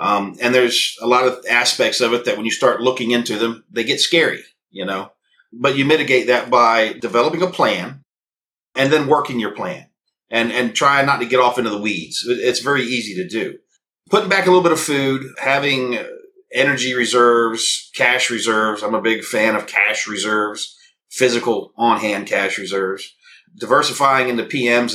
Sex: male